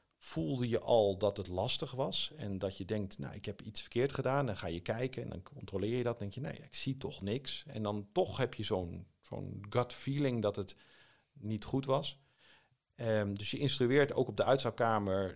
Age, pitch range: 50-69, 95-125 Hz